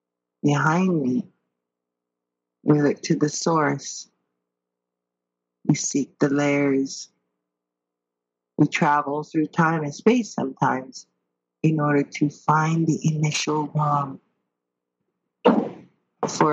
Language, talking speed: English, 95 wpm